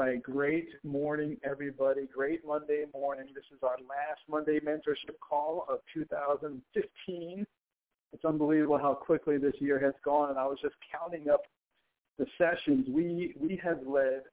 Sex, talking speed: male, 150 wpm